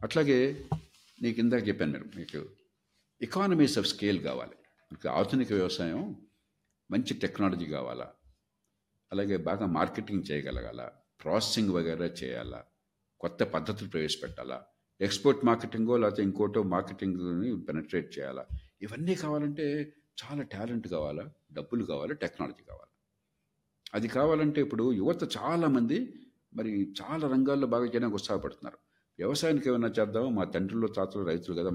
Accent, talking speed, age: native, 110 wpm, 50-69